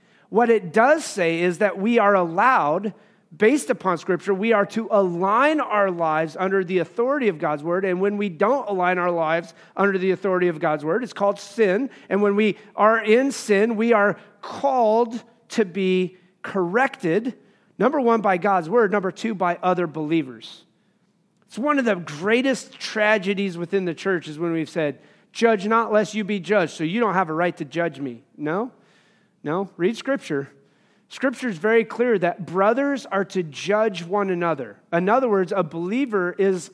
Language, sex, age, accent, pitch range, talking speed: English, male, 30-49, American, 185-225 Hz, 180 wpm